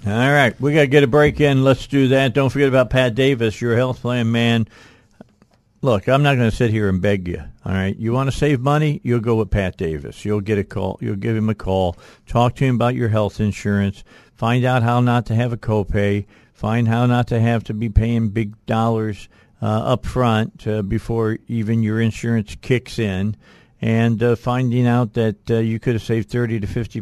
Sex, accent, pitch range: male, American, 110-125 Hz